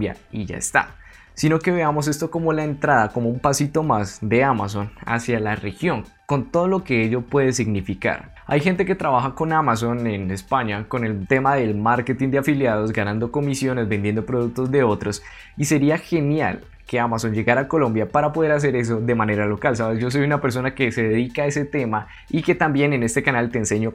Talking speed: 205 wpm